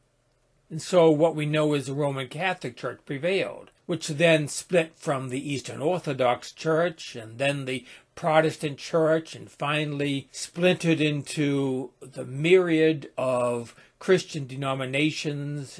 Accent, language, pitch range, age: American, English, 130-155 Hz, 60-79